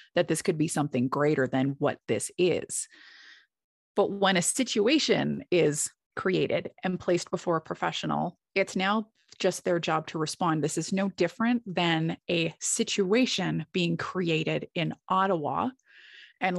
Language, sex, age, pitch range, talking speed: English, female, 30-49, 155-190 Hz, 145 wpm